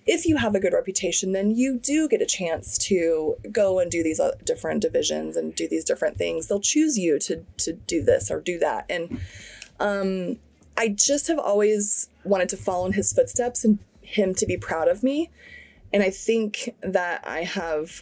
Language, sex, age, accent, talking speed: English, female, 20-39, American, 195 wpm